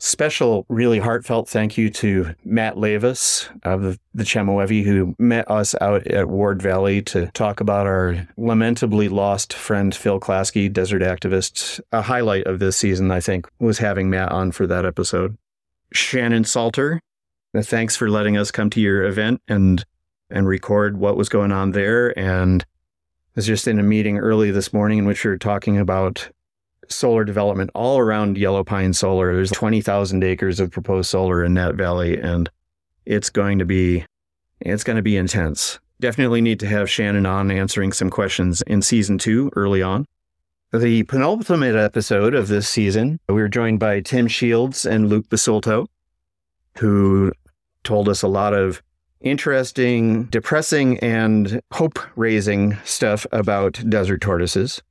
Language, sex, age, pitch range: English, male, 40-59, 95-110 Hz